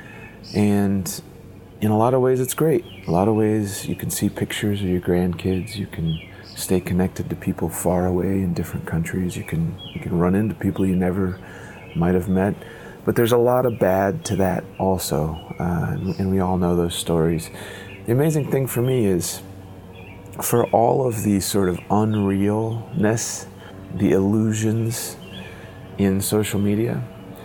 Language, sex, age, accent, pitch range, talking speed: English, male, 30-49, American, 95-105 Hz, 170 wpm